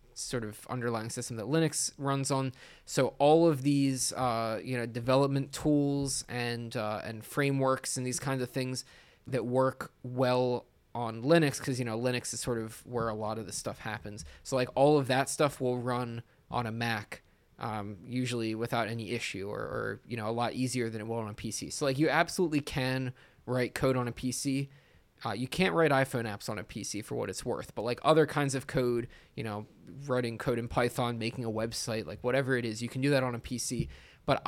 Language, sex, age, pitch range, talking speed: English, male, 20-39, 115-135 Hz, 215 wpm